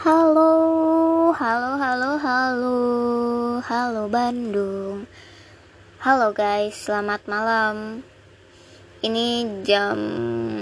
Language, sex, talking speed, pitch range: Indonesian, male, 70 wpm, 205-250 Hz